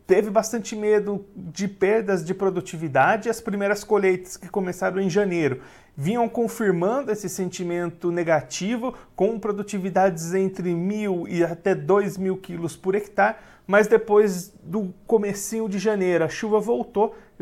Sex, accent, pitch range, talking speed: male, Brazilian, 175-210 Hz, 140 wpm